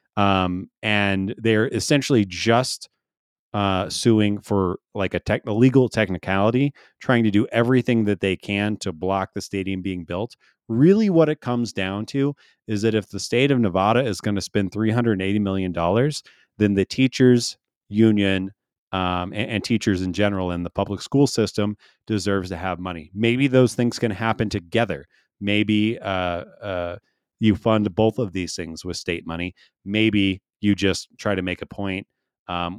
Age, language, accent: 30-49, English, American